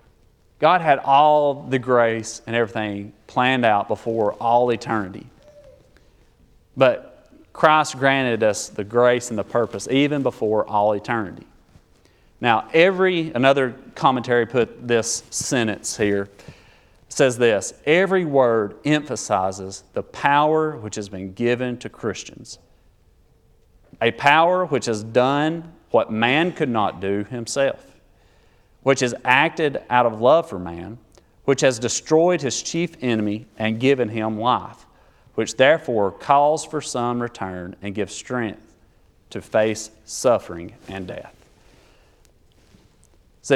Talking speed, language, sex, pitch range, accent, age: 125 wpm, English, male, 105-145 Hz, American, 40-59